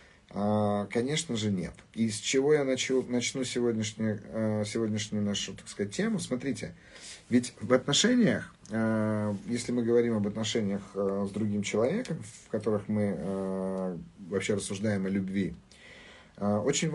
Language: Russian